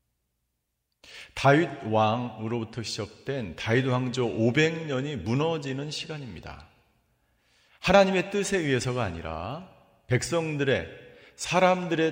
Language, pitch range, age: Korean, 110-160 Hz, 40-59